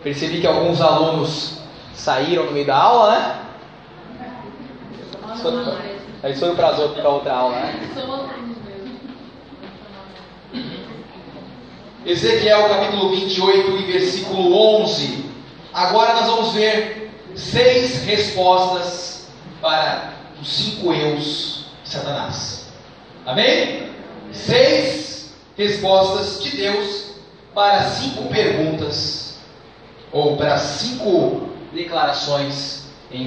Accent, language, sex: Brazilian, Portuguese, male